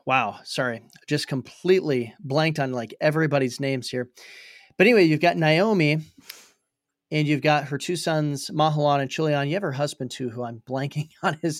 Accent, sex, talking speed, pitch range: American, male, 175 wpm, 135-155 Hz